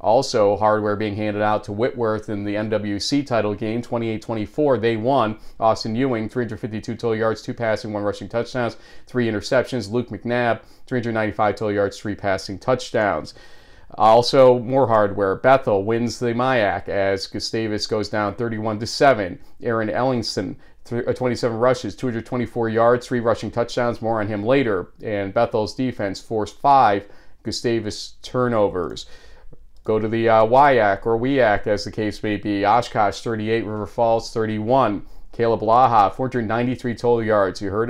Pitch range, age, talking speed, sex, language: 105-125 Hz, 40-59, 145 wpm, male, English